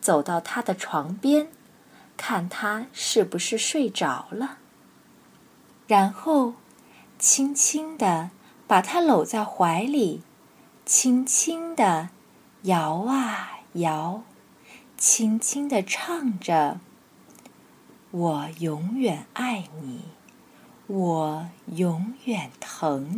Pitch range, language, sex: 185-270 Hz, Chinese, female